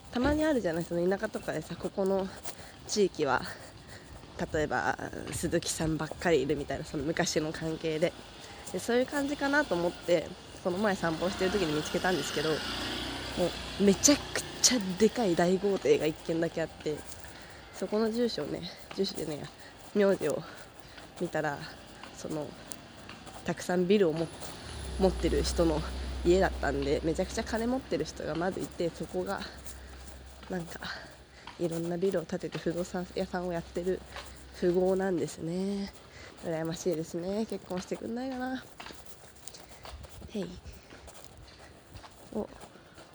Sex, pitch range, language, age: female, 165-205 Hz, Japanese, 20-39